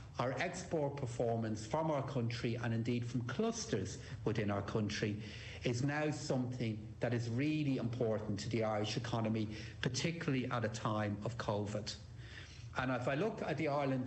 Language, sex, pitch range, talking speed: English, male, 110-140 Hz, 160 wpm